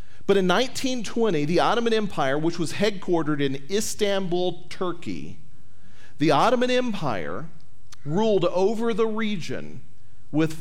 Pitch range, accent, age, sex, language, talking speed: 130-195 Hz, American, 40-59, male, English, 115 wpm